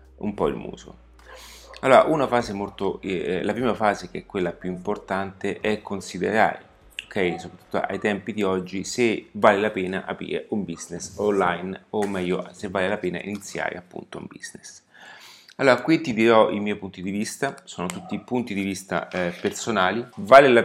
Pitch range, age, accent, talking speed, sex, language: 90-105 Hz, 30-49, native, 175 wpm, male, Italian